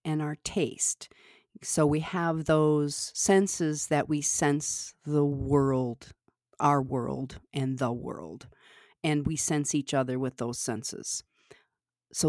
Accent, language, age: American, English, 40-59